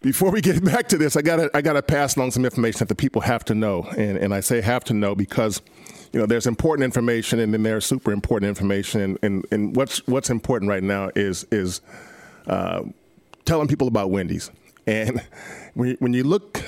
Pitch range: 105-135 Hz